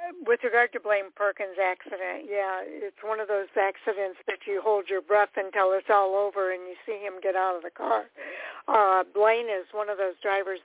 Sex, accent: female, American